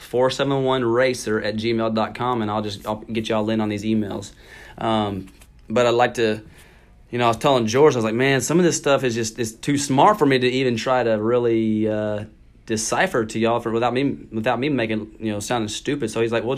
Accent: American